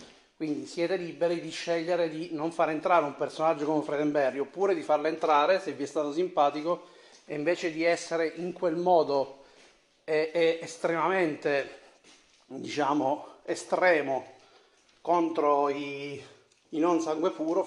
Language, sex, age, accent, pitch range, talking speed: Italian, male, 30-49, native, 150-180 Hz, 135 wpm